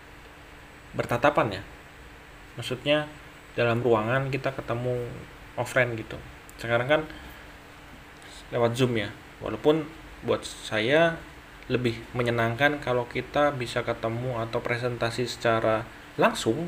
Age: 20-39